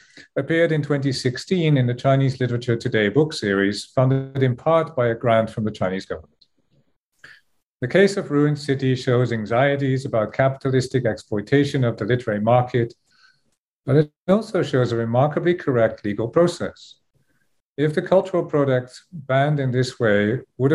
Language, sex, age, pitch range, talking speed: English, male, 50-69, 105-135 Hz, 150 wpm